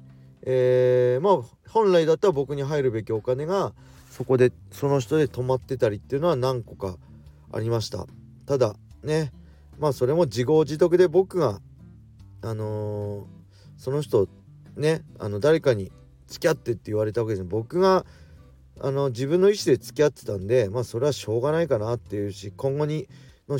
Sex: male